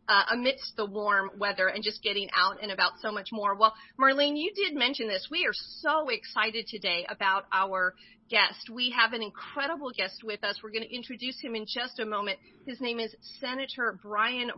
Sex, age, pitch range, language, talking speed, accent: female, 40-59, 205-250 Hz, English, 200 wpm, American